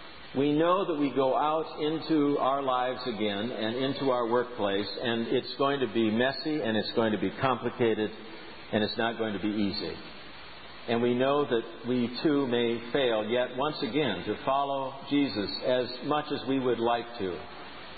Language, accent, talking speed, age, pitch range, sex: English, American, 180 wpm, 50-69, 115-140 Hz, male